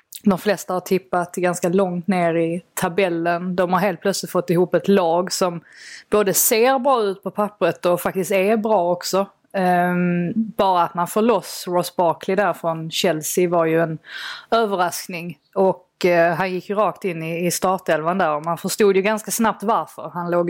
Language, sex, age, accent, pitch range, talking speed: Swedish, female, 20-39, native, 175-205 Hz, 180 wpm